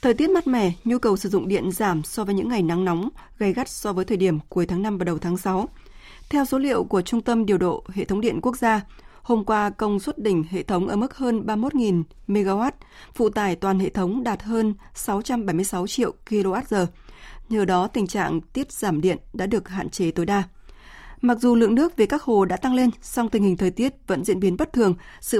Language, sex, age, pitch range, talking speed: Vietnamese, female, 20-39, 190-230 Hz, 230 wpm